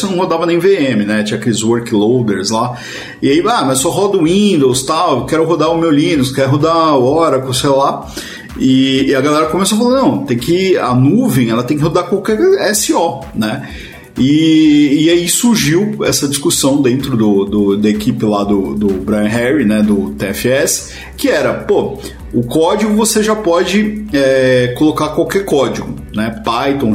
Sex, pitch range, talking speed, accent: male, 125-185 Hz, 175 wpm, Brazilian